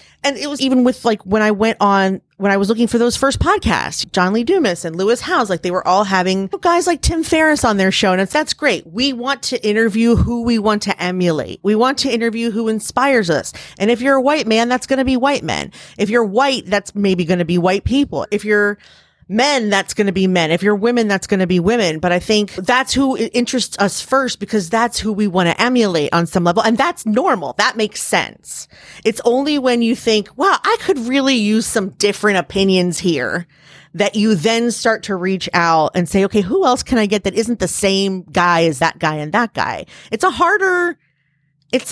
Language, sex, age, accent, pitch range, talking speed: English, female, 30-49, American, 185-250 Hz, 230 wpm